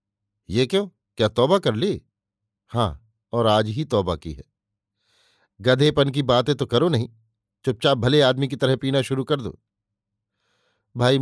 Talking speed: 155 wpm